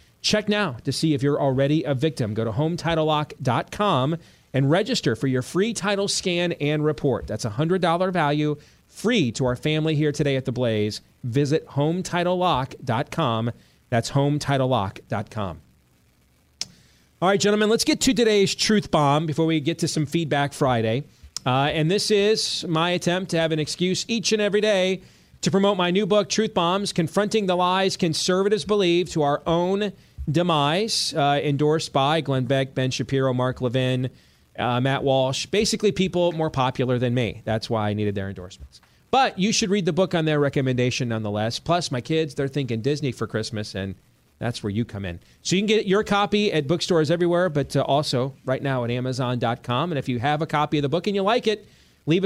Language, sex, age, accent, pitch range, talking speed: English, male, 30-49, American, 125-180 Hz, 185 wpm